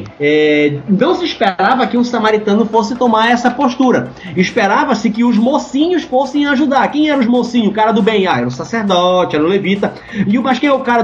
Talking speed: 210 wpm